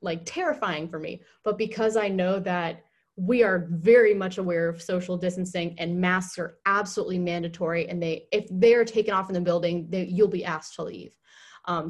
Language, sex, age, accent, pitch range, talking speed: English, female, 20-39, American, 175-215 Hz, 195 wpm